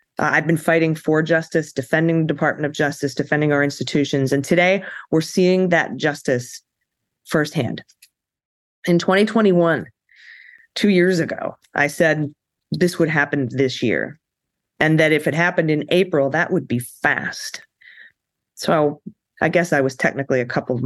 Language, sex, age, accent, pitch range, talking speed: English, female, 30-49, American, 135-165 Hz, 150 wpm